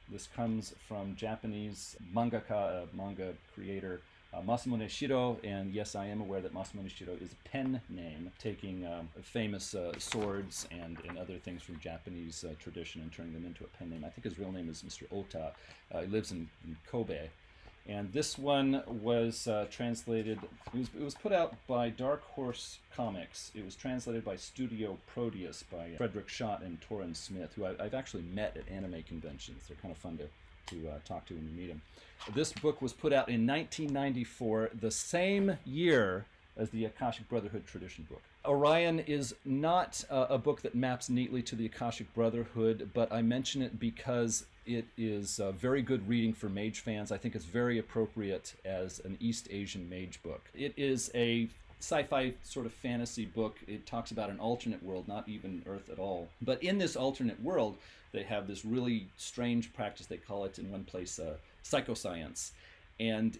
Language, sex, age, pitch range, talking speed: English, male, 30-49, 90-120 Hz, 185 wpm